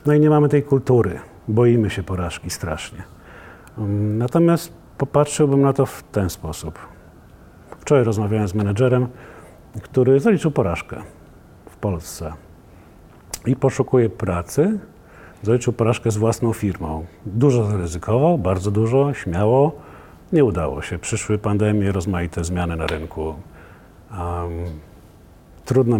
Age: 50-69